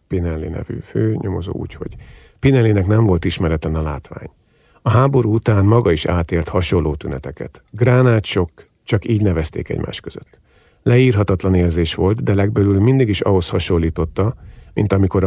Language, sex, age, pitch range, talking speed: Hungarian, male, 50-69, 85-110 Hz, 145 wpm